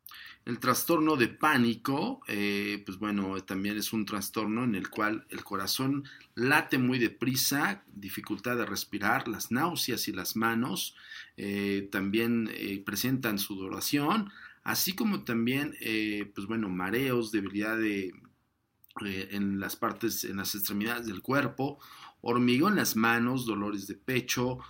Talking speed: 135 wpm